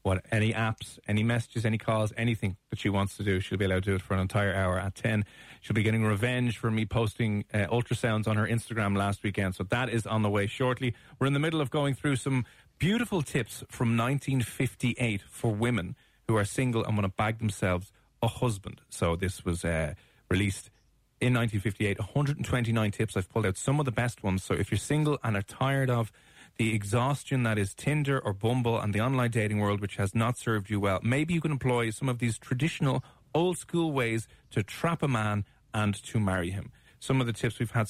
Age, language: 30-49, English